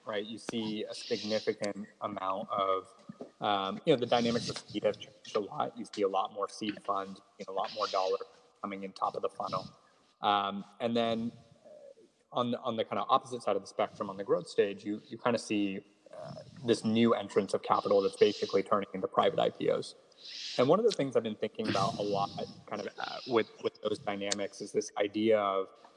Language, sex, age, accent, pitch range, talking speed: English, male, 20-39, American, 100-145 Hz, 215 wpm